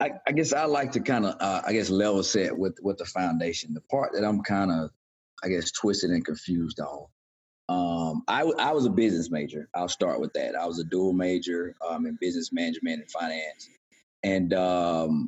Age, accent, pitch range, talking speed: 30-49, American, 85-105 Hz, 210 wpm